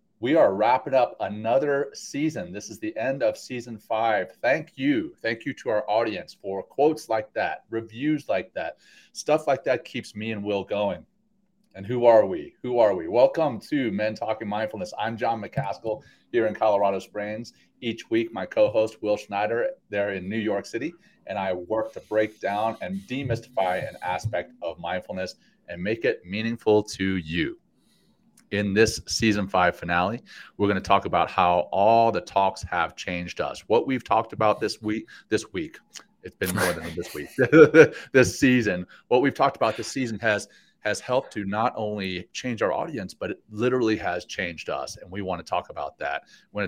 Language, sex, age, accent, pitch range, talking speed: English, male, 30-49, American, 95-135 Hz, 190 wpm